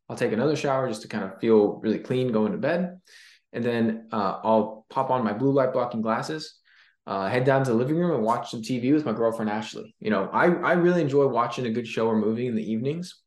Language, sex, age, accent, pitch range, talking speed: English, male, 20-39, American, 110-145 Hz, 250 wpm